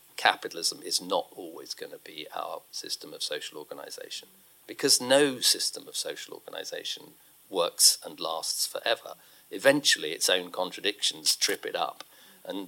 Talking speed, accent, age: 140 wpm, British, 40-59